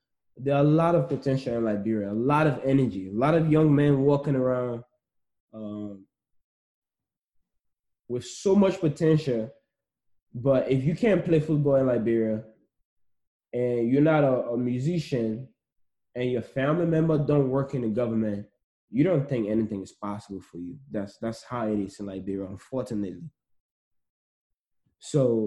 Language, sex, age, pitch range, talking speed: English, male, 20-39, 110-140 Hz, 150 wpm